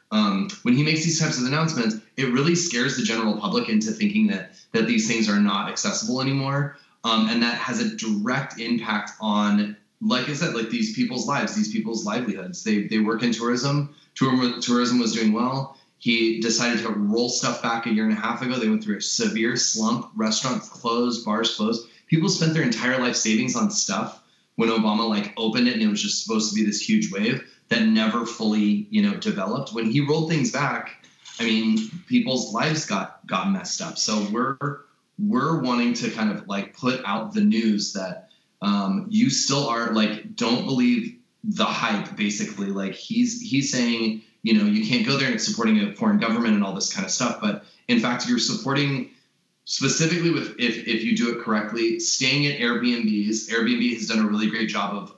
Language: English